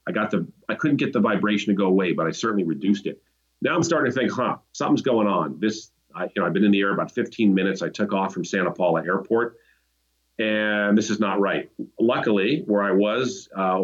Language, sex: English, male